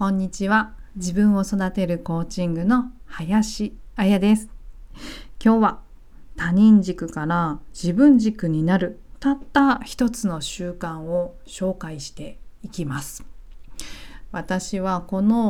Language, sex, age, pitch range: Japanese, female, 50-69, 170-220 Hz